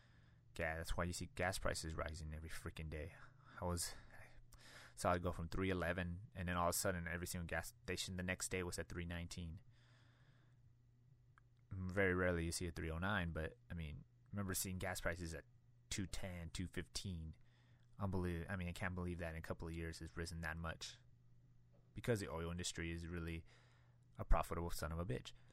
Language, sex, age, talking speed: English, male, 20-39, 185 wpm